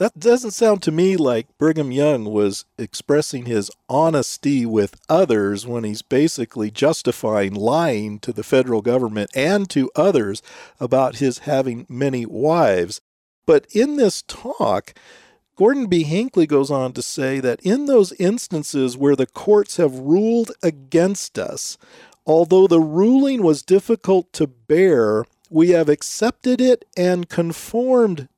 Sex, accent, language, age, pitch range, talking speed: male, American, English, 50-69, 135-200 Hz, 140 wpm